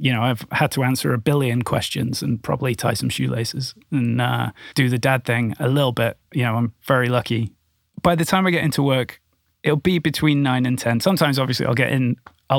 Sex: male